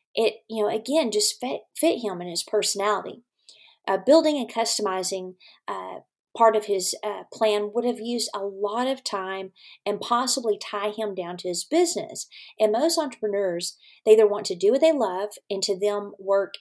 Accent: American